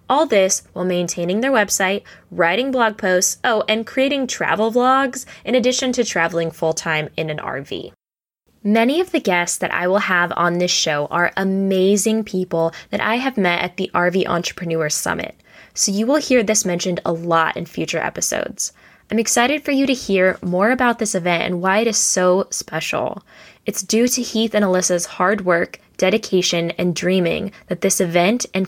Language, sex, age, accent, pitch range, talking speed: English, female, 10-29, American, 175-220 Hz, 180 wpm